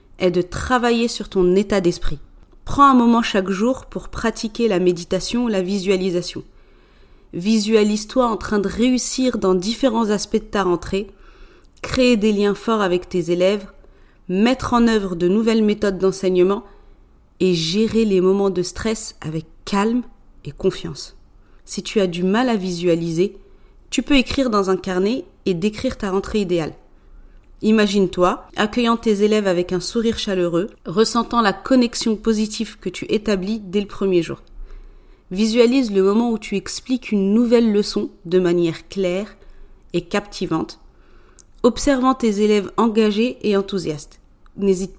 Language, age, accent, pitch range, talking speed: French, 30-49, French, 185-230 Hz, 150 wpm